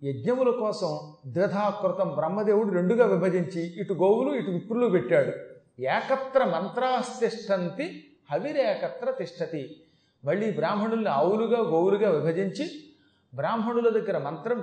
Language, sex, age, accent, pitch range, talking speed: Telugu, male, 40-59, native, 180-250 Hz, 90 wpm